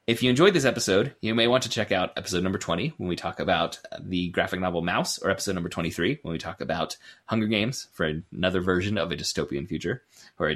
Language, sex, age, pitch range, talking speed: English, male, 30-49, 85-110 Hz, 235 wpm